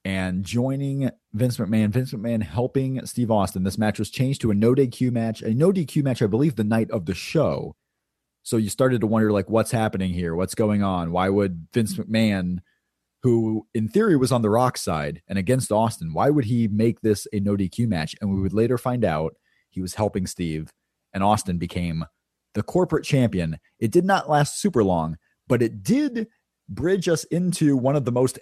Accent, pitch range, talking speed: American, 100-130 Hz, 200 wpm